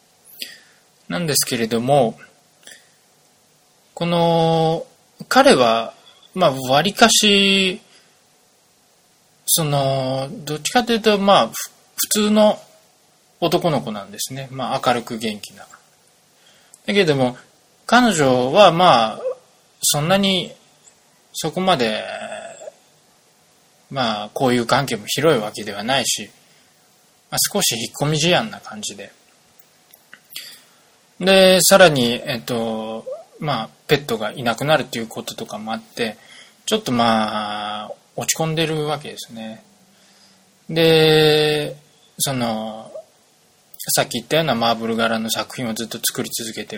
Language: Japanese